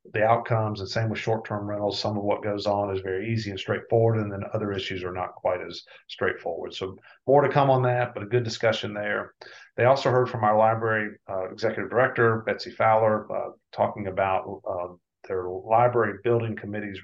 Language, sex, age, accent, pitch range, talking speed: English, male, 40-59, American, 105-115 Hz, 195 wpm